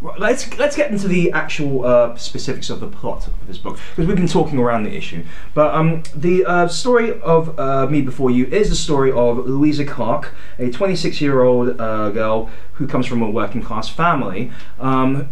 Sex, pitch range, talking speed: male, 105-150 Hz, 185 wpm